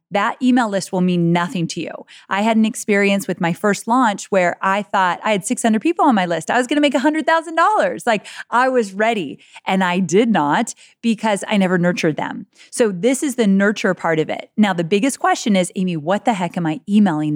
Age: 30-49